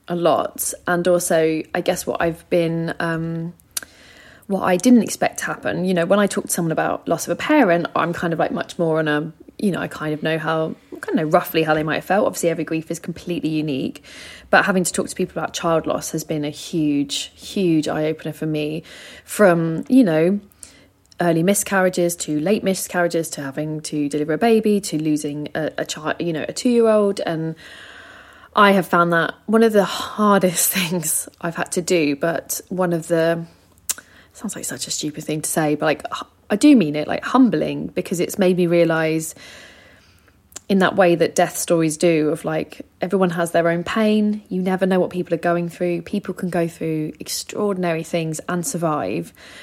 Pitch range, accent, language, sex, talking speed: 155-185 Hz, British, English, female, 205 wpm